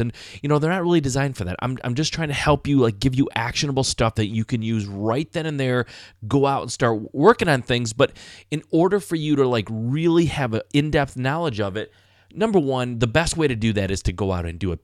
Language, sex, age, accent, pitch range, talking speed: English, male, 30-49, American, 110-145 Hz, 265 wpm